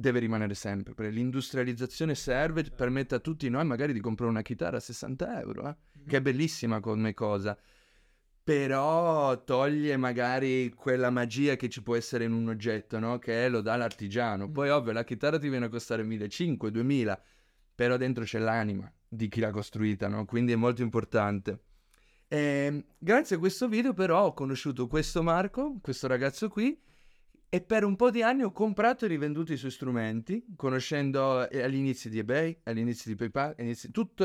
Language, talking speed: Italian, 165 wpm